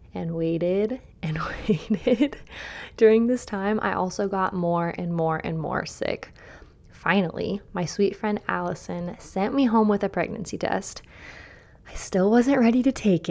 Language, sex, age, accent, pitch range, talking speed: English, female, 20-39, American, 175-225 Hz, 155 wpm